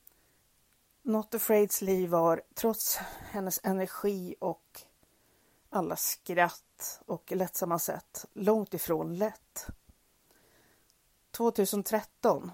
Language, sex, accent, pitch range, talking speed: Swedish, female, native, 170-205 Hz, 75 wpm